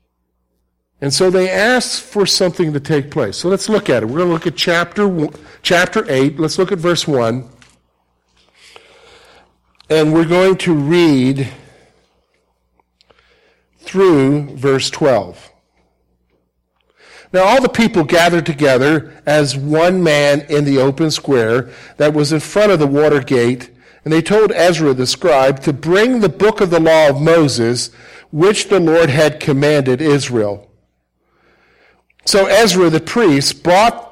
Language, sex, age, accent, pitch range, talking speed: English, male, 50-69, American, 135-180 Hz, 145 wpm